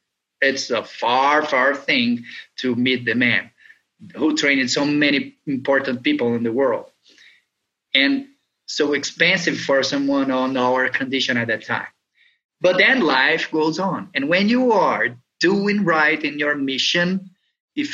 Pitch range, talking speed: 155-230 Hz, 145 wpm